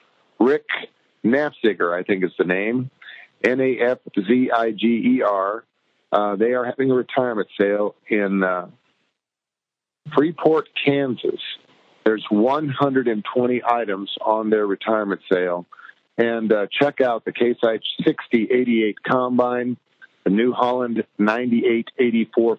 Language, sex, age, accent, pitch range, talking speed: English, male, 50-69, American, 105-125 Hz, 100 wpm